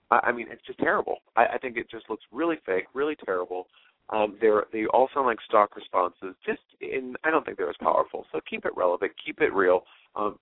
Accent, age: American, 40-59